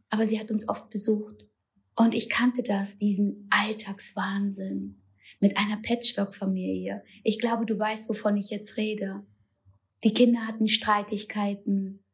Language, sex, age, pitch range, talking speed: German, female, 20-39, 200-235 Hz, 135 wpm